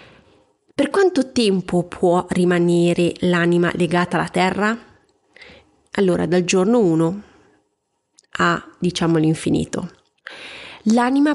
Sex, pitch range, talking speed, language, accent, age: female, 175-205 Hz, 90 wpm, Italian, native, 30-49